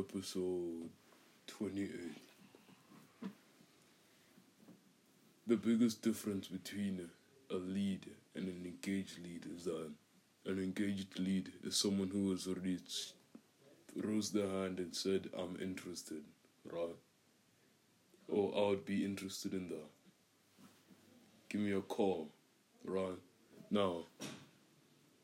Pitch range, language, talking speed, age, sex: 90-105 Hz, English, 100 wpm, 20-39, male